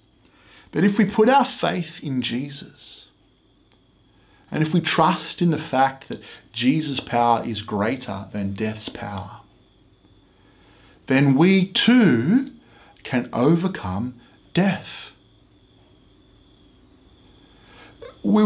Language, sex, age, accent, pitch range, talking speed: English, male, 40-59, Australian, 100-165 Hz, 100 wpm